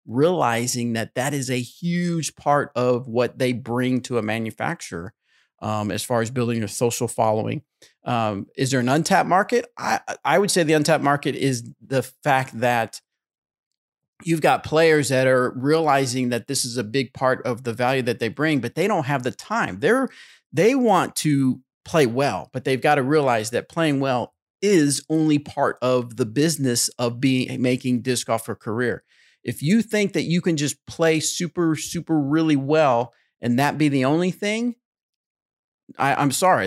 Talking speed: 180 wpm